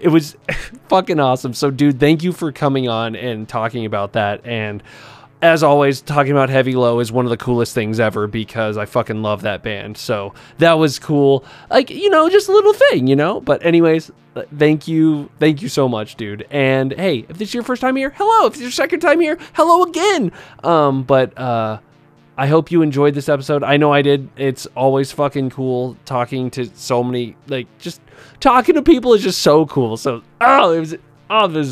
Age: 20-39